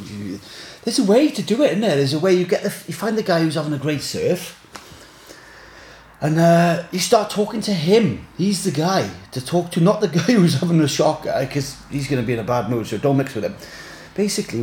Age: 30-49